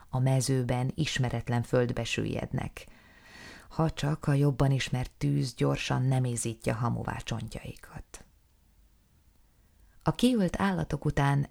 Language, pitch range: Hungarian, 115-145 Hz